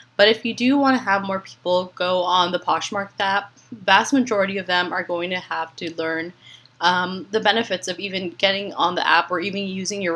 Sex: female